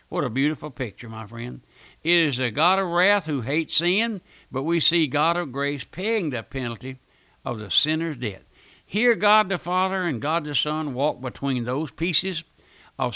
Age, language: 60-79, English